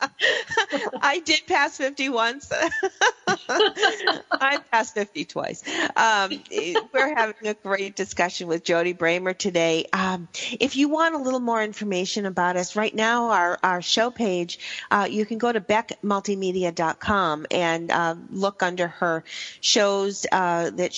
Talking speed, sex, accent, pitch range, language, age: 145 wpm, female, American, 175-225 Hz, English, 40-59